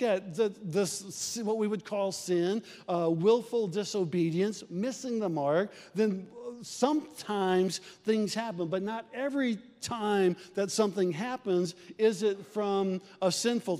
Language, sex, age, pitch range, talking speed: English, male, 50-69, 185-220 Hz, 130 wpm